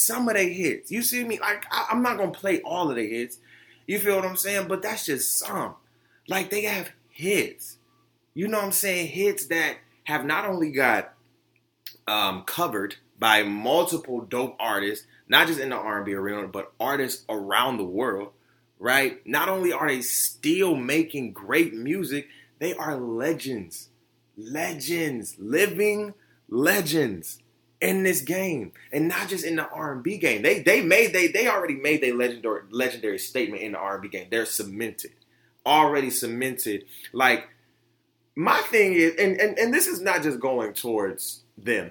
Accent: American